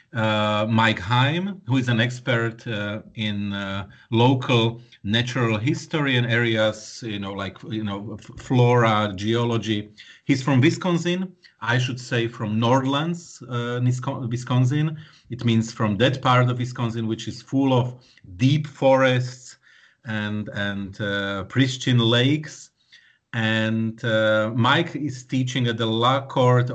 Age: 40-59